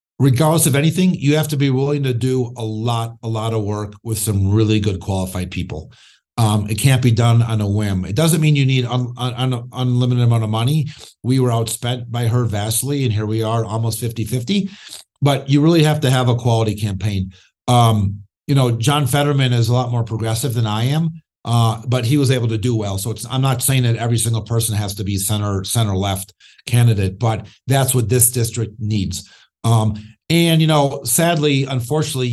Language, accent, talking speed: English, American, 210 wpm